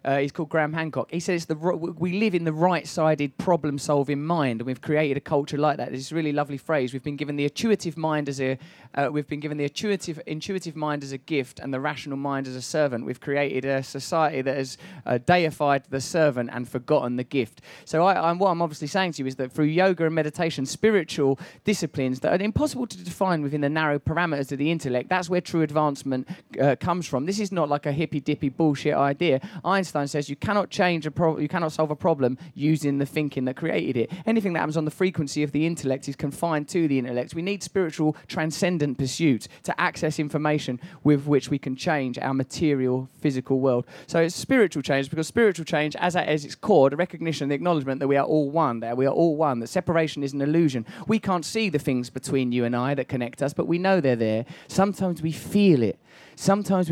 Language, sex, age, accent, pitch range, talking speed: English, male, 20-39, British, 135-170 Hz, 230 wpm